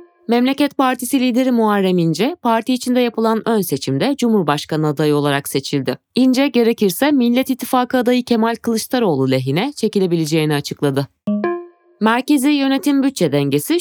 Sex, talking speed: female, 120 wpm